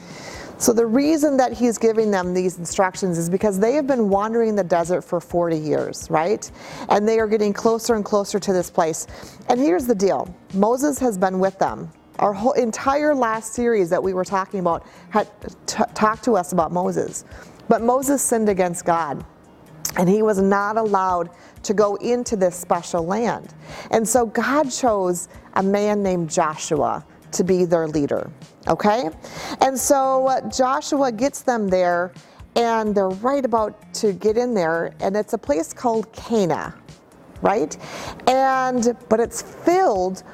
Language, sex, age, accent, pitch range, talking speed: English, female, 40-59, American, 185-245 Hz, 165 wpm